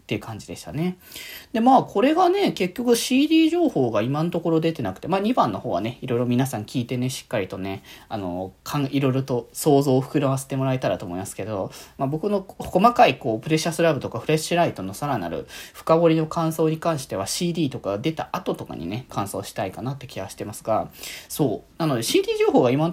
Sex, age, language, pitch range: male, 20-39, Japanese, 125-195 Hz